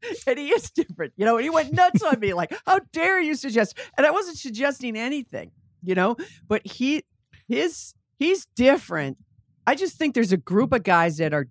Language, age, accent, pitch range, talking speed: English, 50-69, American, 155-225 Hz, 200 wpm